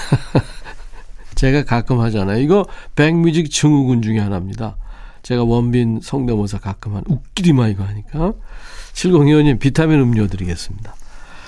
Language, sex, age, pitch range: Korean, male, 40-59, 110-155 Hz